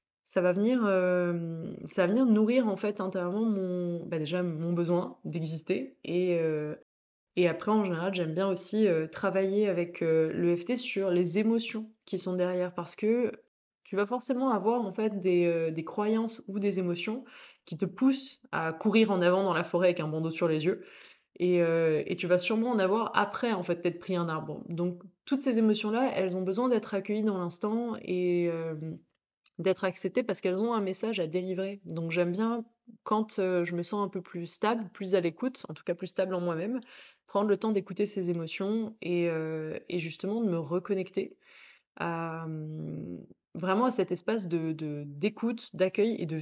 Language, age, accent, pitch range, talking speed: French, 20-39, French, 175-215 Hz, 190 wpm